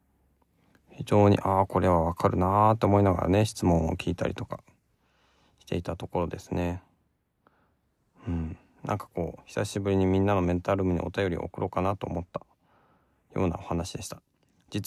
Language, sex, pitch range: Japanese, male, 85-115 Hz